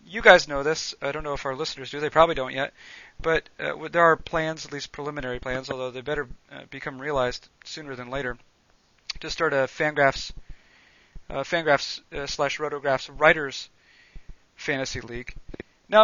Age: 40-59